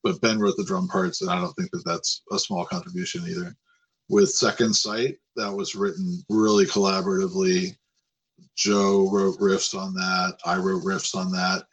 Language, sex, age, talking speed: English, male, 40-59, 175 wpm